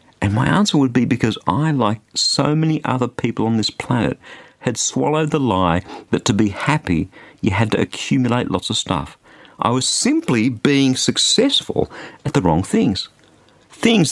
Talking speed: 170 wpm